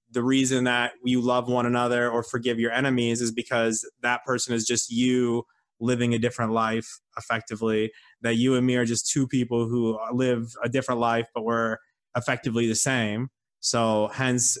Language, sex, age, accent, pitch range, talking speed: English, male, 20-39, American, 120-140 Hz, 175 wpm